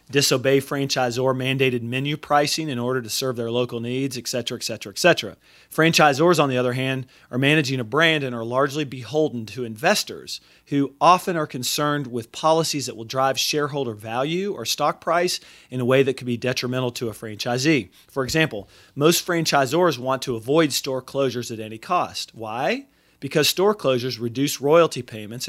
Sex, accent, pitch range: male, American, 120-145 Hz